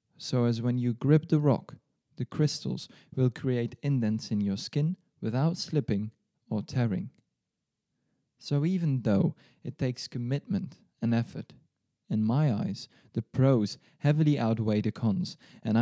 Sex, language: male, English